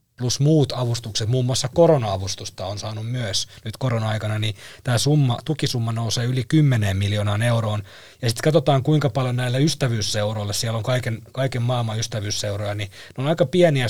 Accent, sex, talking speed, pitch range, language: native, male, 160 wpm, 110-145 Hz, Finnish